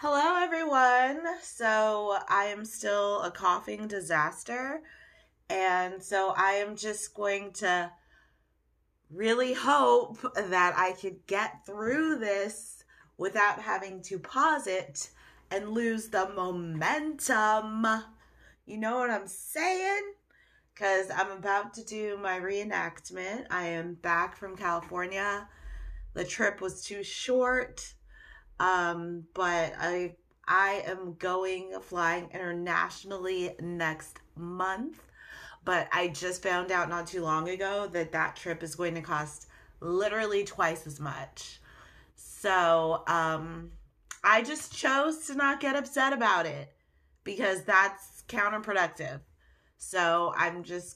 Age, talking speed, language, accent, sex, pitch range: 20-39, 120 wpm, English, American, female, 170-215 Hz